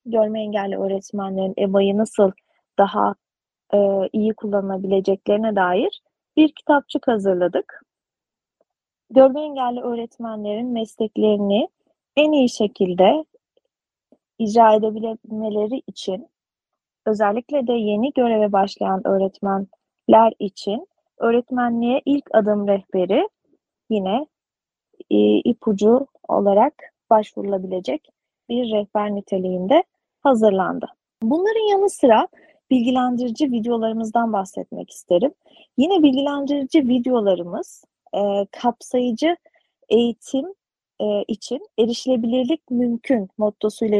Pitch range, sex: 205-280 Hz, female